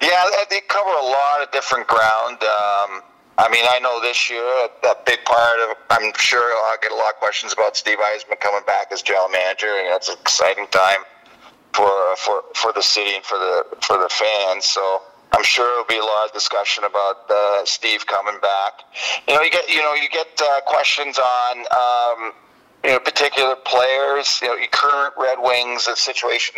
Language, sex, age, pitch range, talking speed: English, male, 40-59, 110-130 Hz, 200 wpm